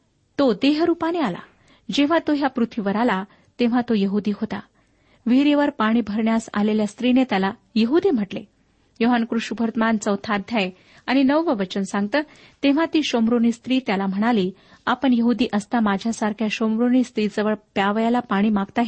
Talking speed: 135 wpm